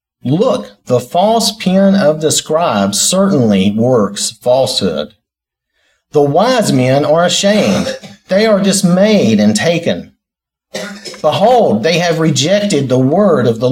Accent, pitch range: American, 150-210 Hz